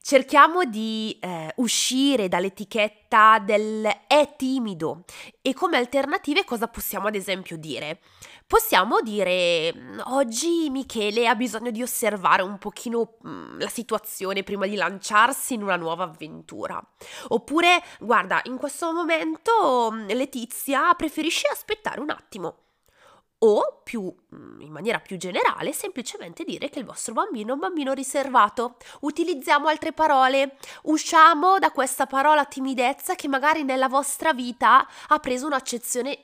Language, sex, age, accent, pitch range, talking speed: Italian, female, 20-39, native, 210-295 Hz, 130 wpm